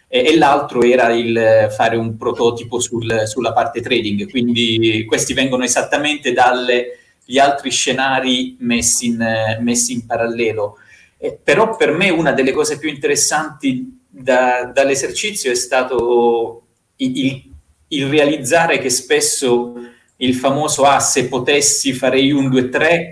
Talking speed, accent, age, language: 120 wpm, native, 30-49, Italian